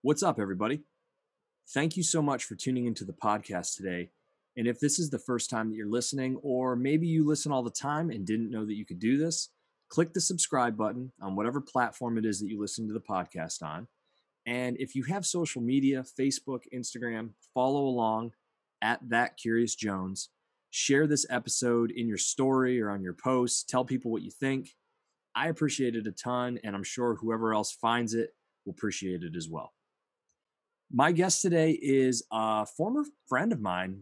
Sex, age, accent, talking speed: male, 30-49, American, 190 wpm